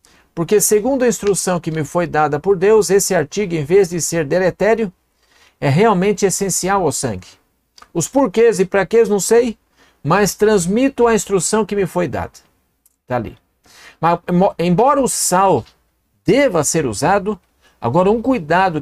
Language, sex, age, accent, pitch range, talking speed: Portuguese, male, 50-69, Brazilian, 155-215 Hz, 155 wpm